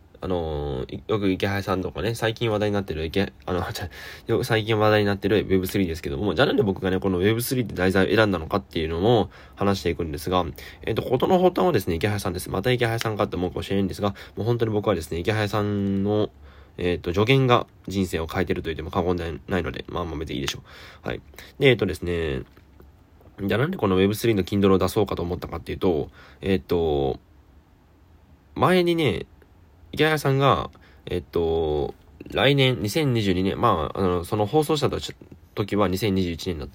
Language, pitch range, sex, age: Japanese, 90-110 Hz, male, 20-39